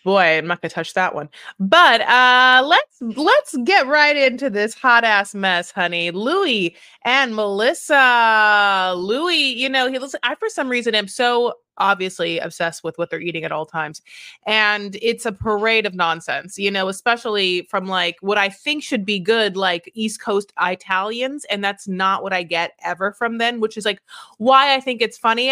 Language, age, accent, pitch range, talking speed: English, 30-49, American, 200-255 Hz, 190 wpm